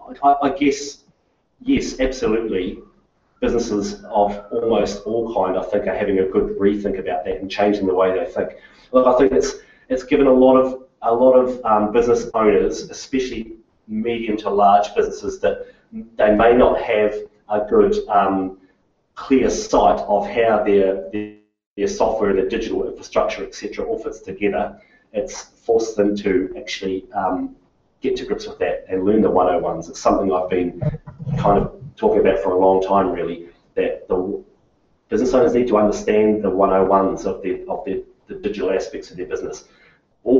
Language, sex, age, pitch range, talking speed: English, male, 30-49, 100-145 Hz, 170 wpm